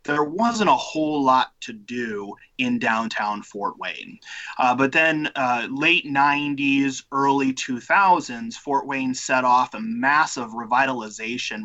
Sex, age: male, 30-49